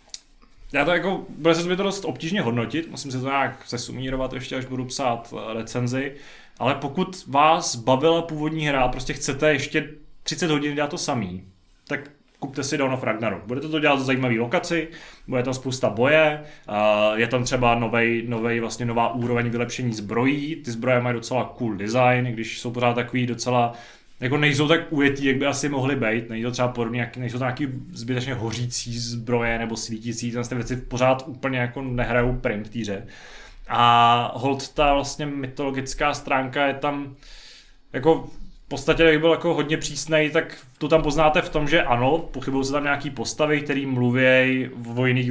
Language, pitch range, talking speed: Czech, 120-150 Hz, 180 wpm